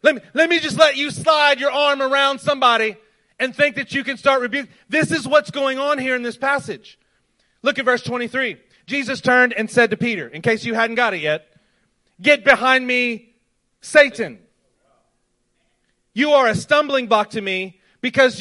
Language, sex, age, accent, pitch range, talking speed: English, male, 40-59, American, 225-275 Hz, 185 wpm